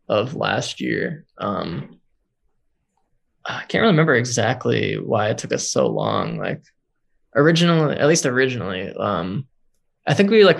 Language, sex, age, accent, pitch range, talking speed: English, male, 20-39, American, 120-150 Hz, 135 wpm